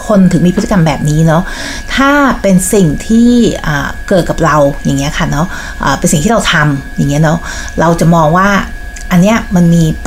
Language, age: Thai, 60-79